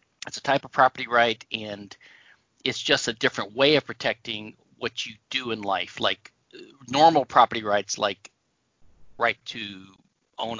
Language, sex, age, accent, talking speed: English, male, 40-59, American, 155 wpm